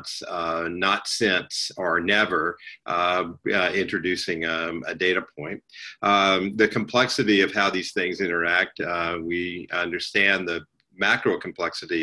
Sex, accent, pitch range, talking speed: male, American, 90-105 Hz, 130 wpm